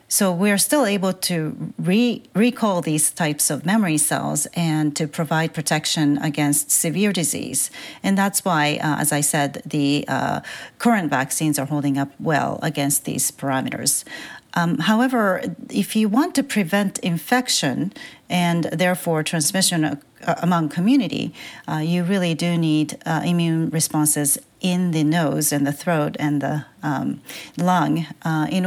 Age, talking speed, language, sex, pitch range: 40-59, 145 wpm, English, female, 150-185 Hz